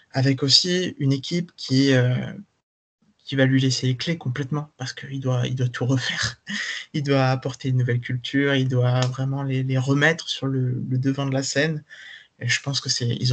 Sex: male